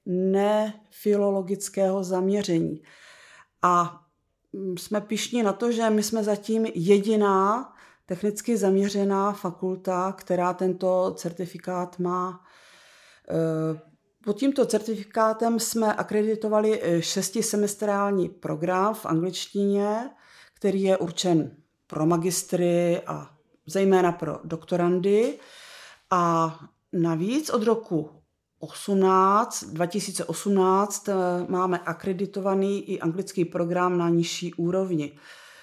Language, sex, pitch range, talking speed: Czech, female, 175-205 Hz, 85 wpm